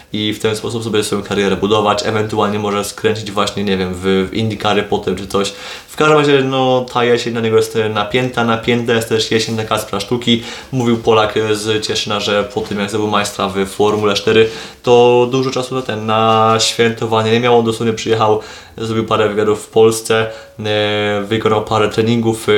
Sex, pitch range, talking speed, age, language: male, 105-120 Hz, 180 wpm, 20-39, Polish